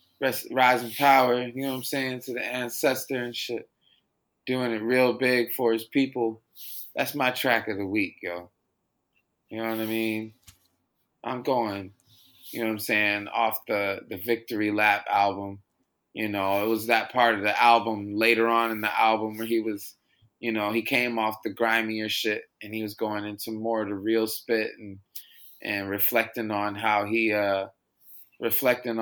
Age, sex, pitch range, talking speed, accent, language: 20-39, male, 105-120 Hz, 180 wpm, American, English